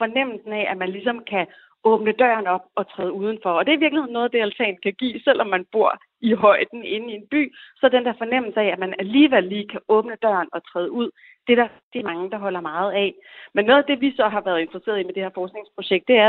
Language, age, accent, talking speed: Danish, 30-49, native, 255 wpm